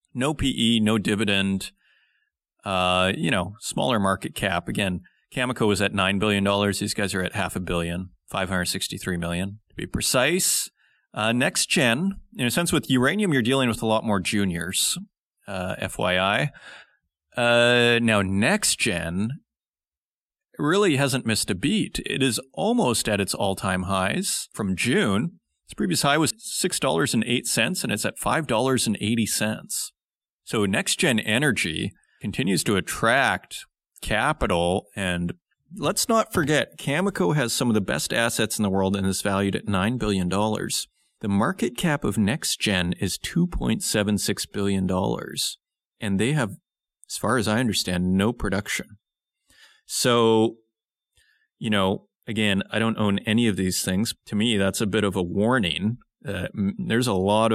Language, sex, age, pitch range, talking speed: English, male, 30-49, 95-125 Hz, 150 wpm